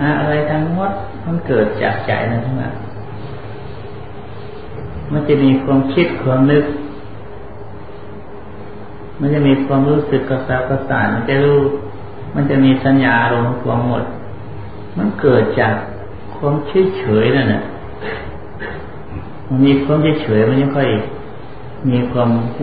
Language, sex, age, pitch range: Thai, male, 50-69, 105-135 Hz